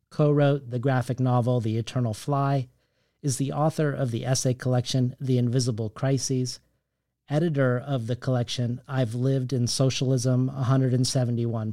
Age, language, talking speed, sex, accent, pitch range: 40-59, English, 135 wpm, male, American, 120-135 Hz